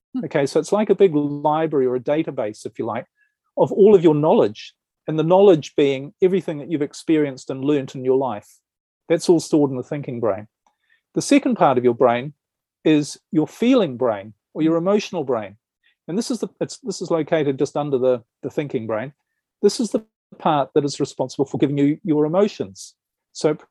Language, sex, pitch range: English, male, 135-180 Hz